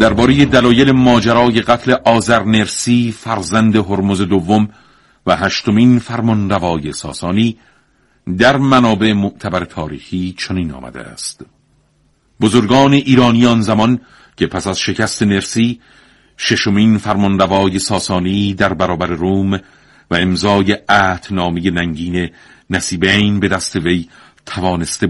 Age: 50-69